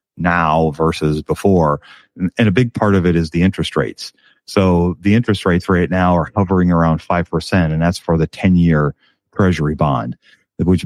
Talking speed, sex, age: 175 wpm, male, 40-59